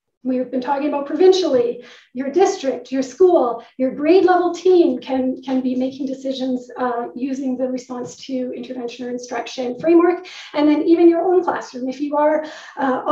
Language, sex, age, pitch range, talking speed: English, female, 40-59, 255-315 Hz, 170 wpm